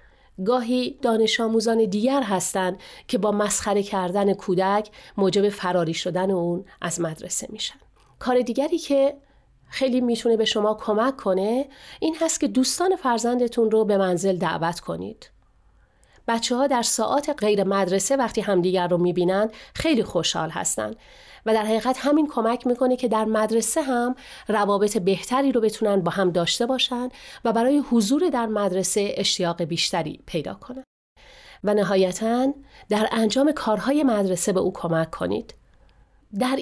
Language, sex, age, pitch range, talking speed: Persian, female, 40-59, 195-250 Hz, 140 wpm